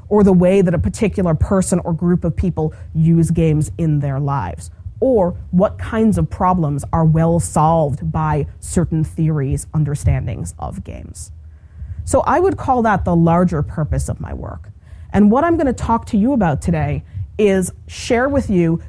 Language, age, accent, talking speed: English, 30-49, American, 170 wpm